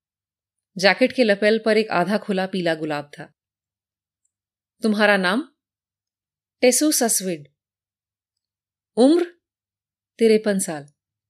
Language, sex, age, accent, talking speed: Hindi, female, 30-49, native, 90 wpm